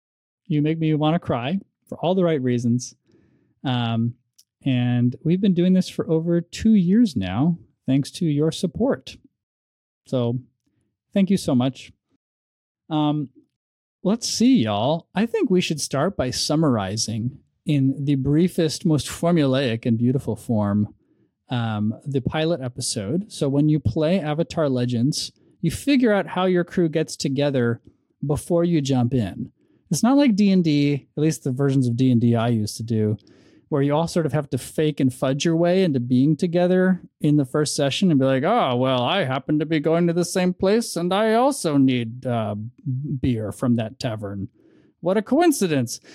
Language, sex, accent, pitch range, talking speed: English, male, American, 125-170 Hz, 170 wpm